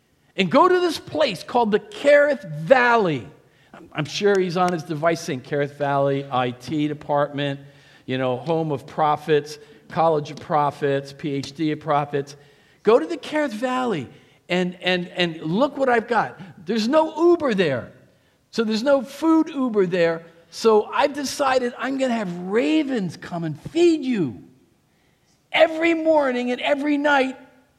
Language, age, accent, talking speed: English, 50-69, American, 150 wpm